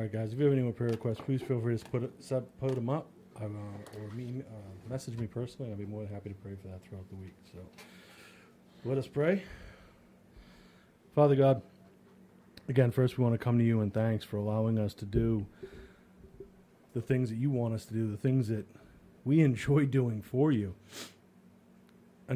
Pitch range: 105-125 Hz